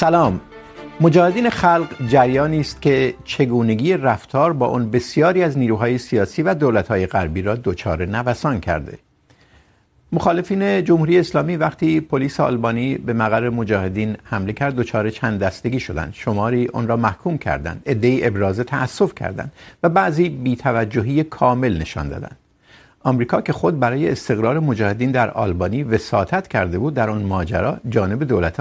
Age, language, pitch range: 50-69, Urdu, 100-150 Hz